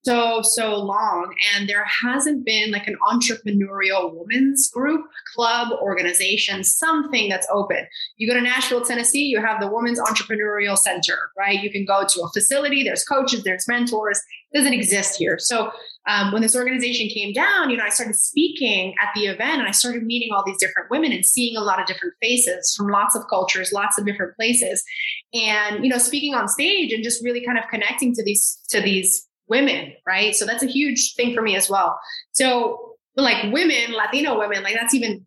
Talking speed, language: 195 wpm, English